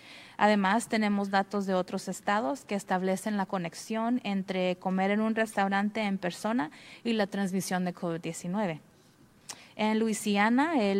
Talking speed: 135 wpm